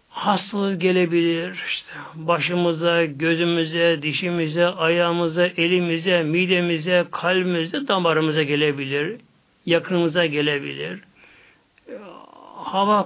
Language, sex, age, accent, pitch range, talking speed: Turkish, male, 60-79, native, 165-225 Hz, 70 wpm